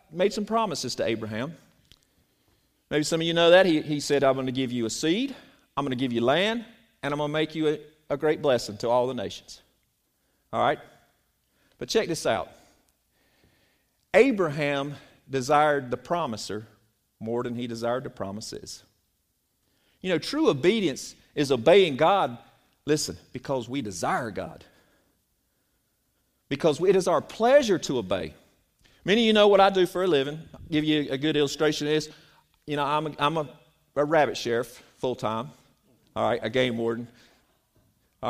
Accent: American